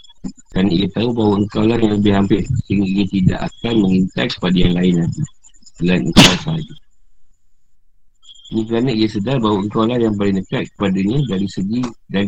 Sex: male